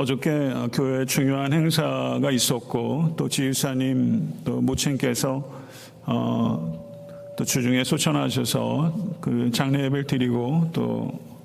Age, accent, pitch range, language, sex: 50-69, native, 125-145 Hz, Korean, male